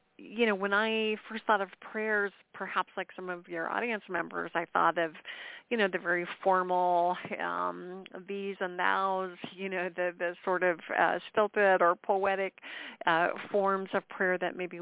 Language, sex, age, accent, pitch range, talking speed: English, female, 40-59, American, 170-200 Hz, 170 wpm